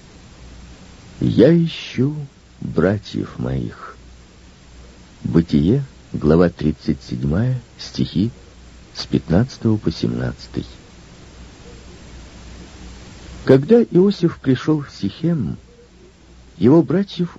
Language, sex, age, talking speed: Russian, male, 50-69, 65 wpm